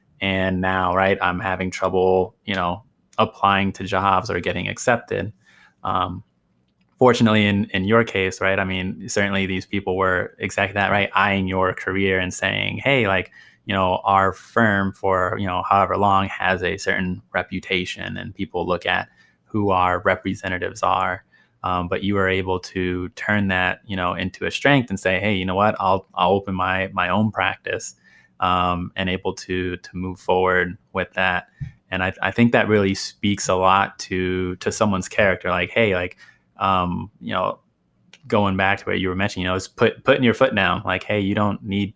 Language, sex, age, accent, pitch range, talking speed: English, male, 20-39, American, 90-100 Hz, 190 wpm